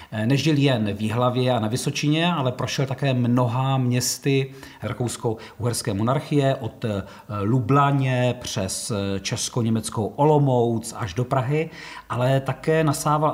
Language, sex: Czech, male